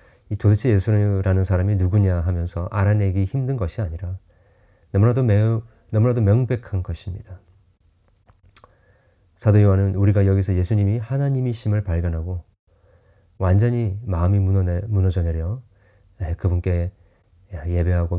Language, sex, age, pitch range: Korean, male, 40-59, 90-110 Hz